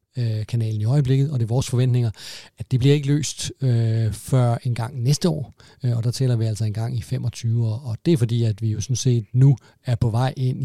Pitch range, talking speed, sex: 115-140 Hz, 240 wpm, male